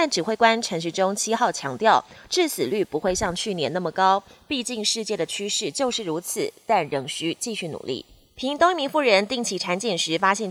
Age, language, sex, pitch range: 20-39, Chinese, female, 180-240 Hz